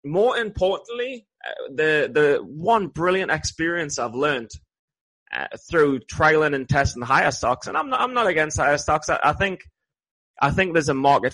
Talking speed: 175 wpm